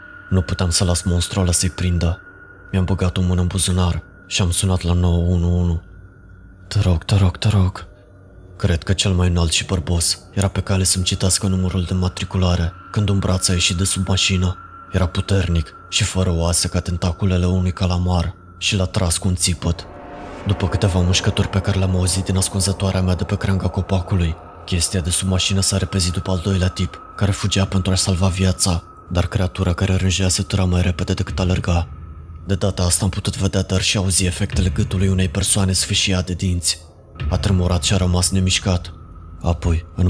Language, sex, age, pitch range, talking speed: Romanian, male, 20-39, 90-95 Hz, 190 wpm